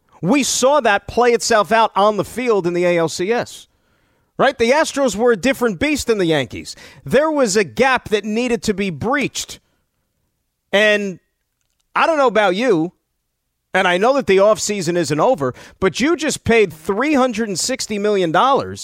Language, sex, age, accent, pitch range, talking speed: English, male, 40-59, American, 190-250 Hz, 160 wpm